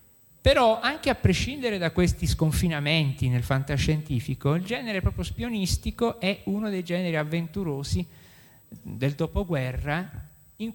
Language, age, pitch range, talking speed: Italian, 50-69, 125-170 Hz, 115 wpm